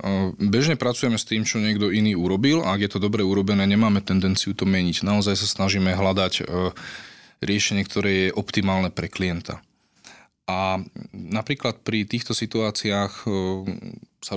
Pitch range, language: 95-105 Hz, Slovak